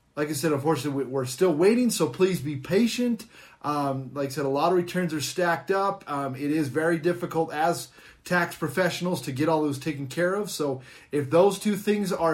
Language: English